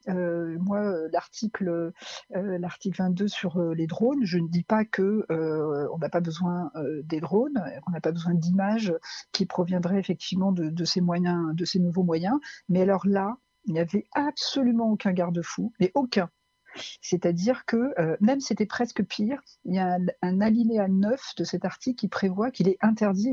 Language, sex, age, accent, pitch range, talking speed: French, female, 50-69, French, 175-215 Hz, 190 wpm